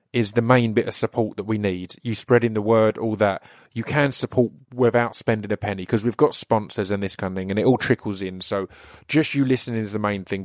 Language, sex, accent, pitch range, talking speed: English, male, British, 105-130 Hz, 255 wpm